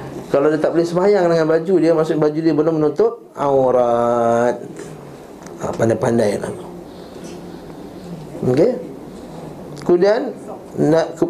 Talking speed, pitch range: 105 wpm, 120-150 Hz